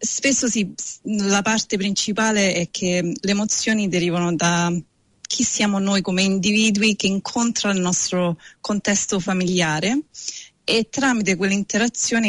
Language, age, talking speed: Italian, 30-49, 115 wpm